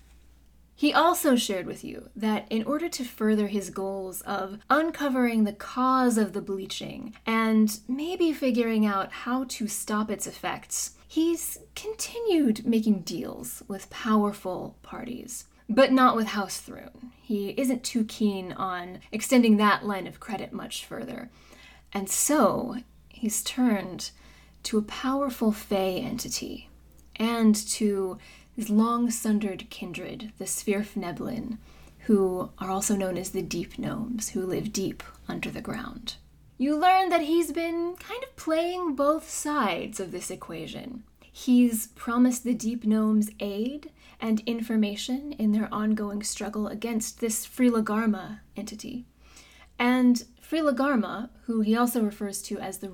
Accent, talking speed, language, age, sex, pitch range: American, 135 wpm, English, 20-39, female, 200-255 Hz